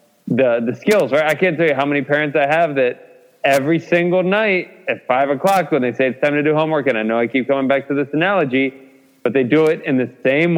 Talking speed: 255 wpm